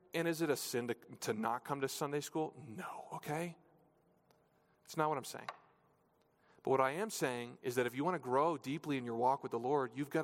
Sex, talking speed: male, 235 wpm